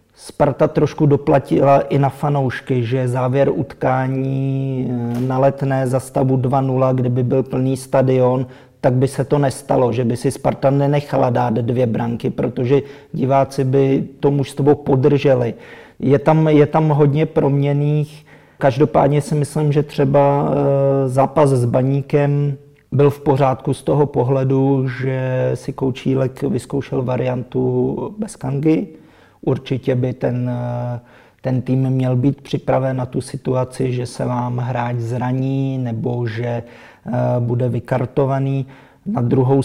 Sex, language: male, Czech